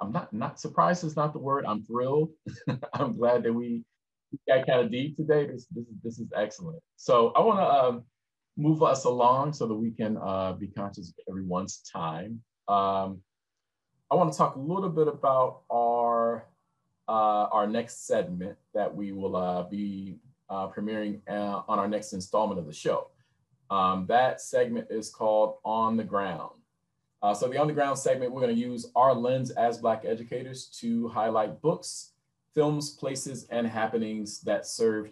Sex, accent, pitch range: male, American, 100-140 Hz